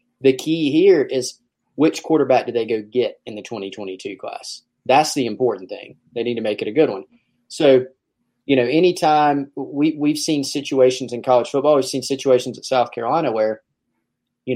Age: 30-49